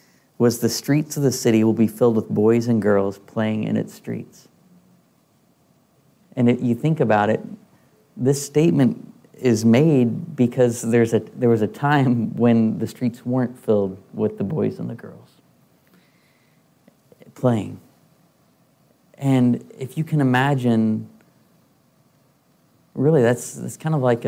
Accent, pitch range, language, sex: American, 115-130 Hz, English, male